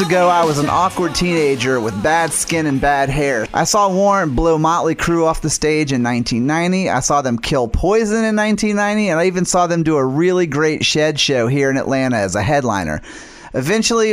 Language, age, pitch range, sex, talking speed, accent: English, 30-49, 135-170 Hz, male, 205 wpm, American